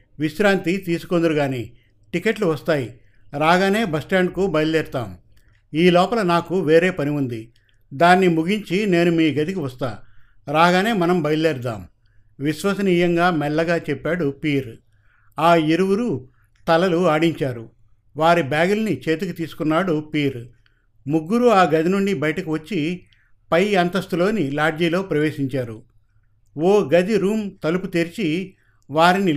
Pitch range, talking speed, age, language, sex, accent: 120-175 Hz, 110 wpm, 50-69, Telugu, male, native